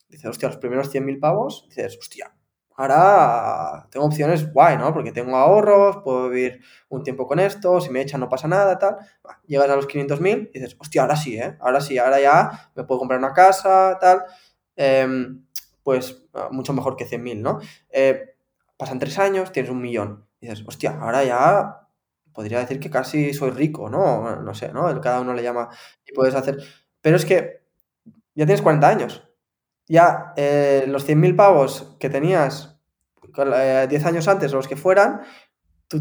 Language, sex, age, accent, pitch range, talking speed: Spanish, male, 20-39, Spanish, 130-175 Hz, 180 wpm